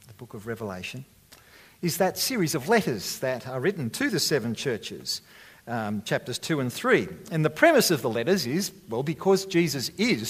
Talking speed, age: 180 wpm, 50-69